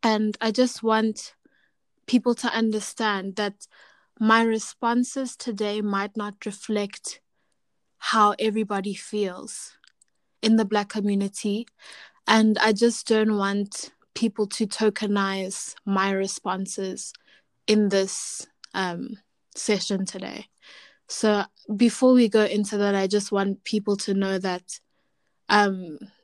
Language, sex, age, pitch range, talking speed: English, female, 20-39, 200-230 Hz, 115 wpm